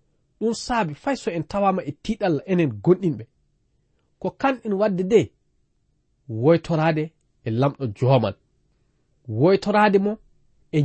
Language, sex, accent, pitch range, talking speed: English, male, South African, 135-190 Hz, 125 wpm